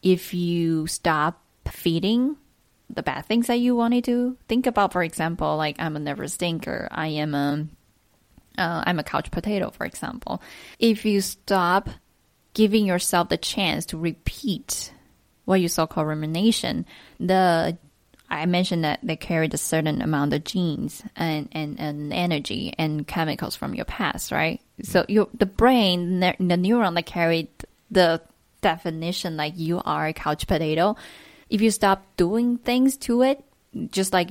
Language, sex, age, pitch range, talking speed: English, female, 10-29, 160-205 Hz, 155 wpm